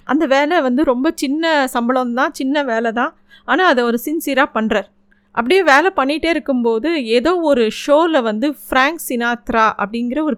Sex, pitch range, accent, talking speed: female, 225-290 Hz, native, 150 wpm